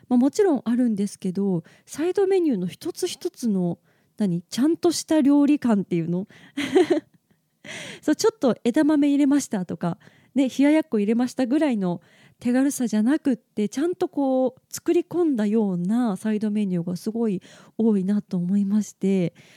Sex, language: female, Japanese